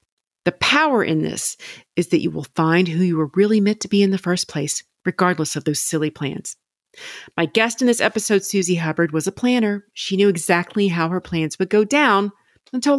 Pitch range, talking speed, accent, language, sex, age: 160-230 Hz, 210 wpm, American, English, female, 40-59